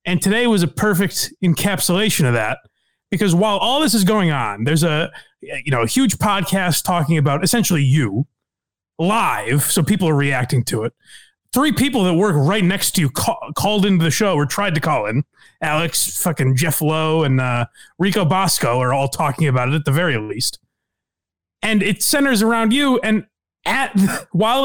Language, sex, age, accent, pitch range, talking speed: English, male, 30-49, American, 130-200 Hz, 185 wpm